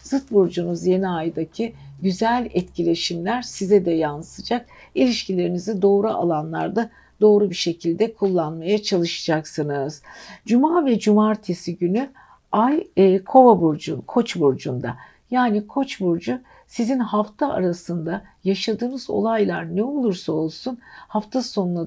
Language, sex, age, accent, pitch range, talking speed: Turkish, female, 60-79, native, 170-220 Hz, 110 wpm